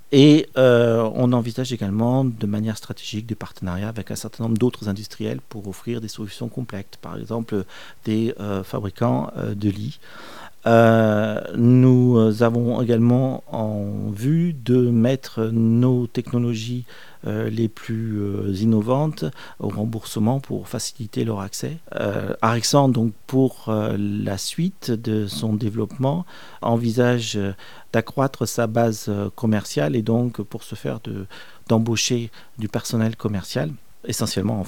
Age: 40-59